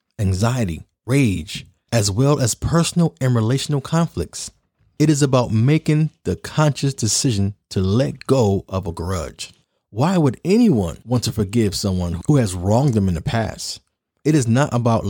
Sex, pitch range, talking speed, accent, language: male, 105-145 Hz, 160 wpm, American, English